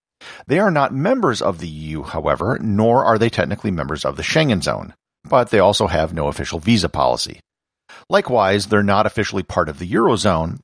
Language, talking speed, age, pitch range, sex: English, 185 wpm, 50-69, 90-115 Hz, male